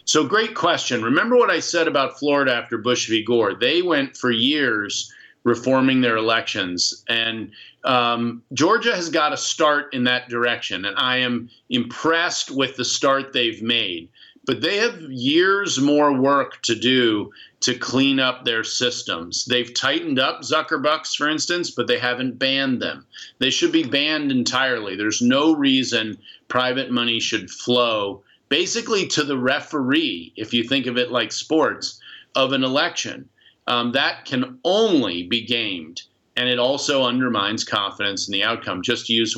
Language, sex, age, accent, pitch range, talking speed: English, male, 40-59, American, 120-145 Hz, 160 wpm